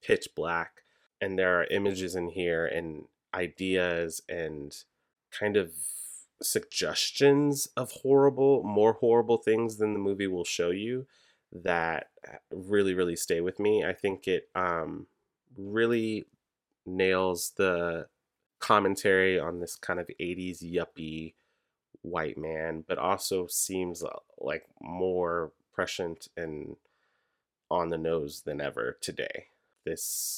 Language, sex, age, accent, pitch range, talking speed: English, male, 30-49, American, 85-105 Hz, 120 wpm